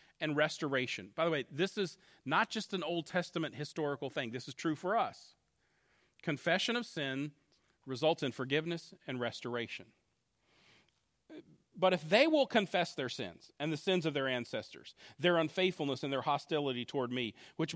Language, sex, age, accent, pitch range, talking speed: English, male, 40-59, American, 145-190 Hz, 160 wpm